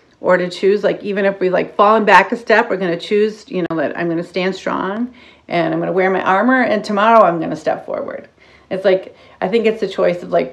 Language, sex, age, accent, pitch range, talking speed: English, female, 40-59, American, 190-245 Hz, 270 wpm